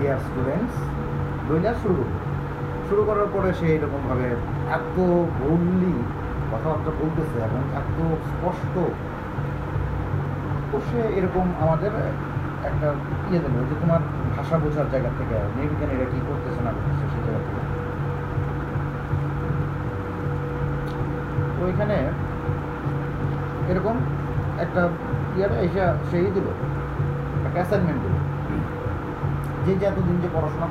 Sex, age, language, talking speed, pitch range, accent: male, 30-49, Bengali, 95 wpm, 130-165 Hz, native